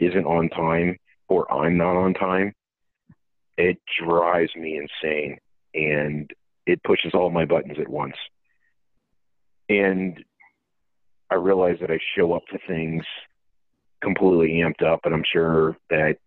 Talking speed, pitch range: 135 wpm, 80-95 Hz